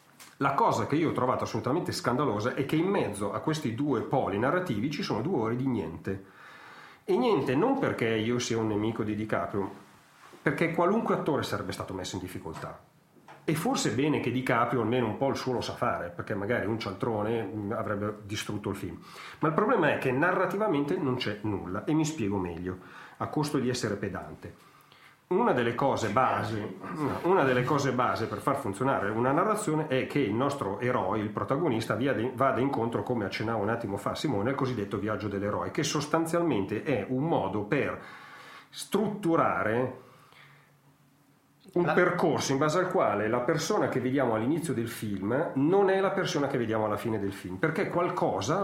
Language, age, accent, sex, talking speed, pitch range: Italian, 40-59, native, male, 180 wpm, 105-145 Hz